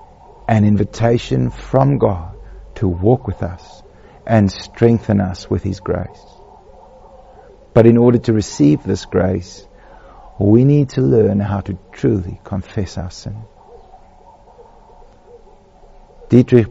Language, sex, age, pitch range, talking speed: English, male, 50-69, 100-120 Hz, 115 wpm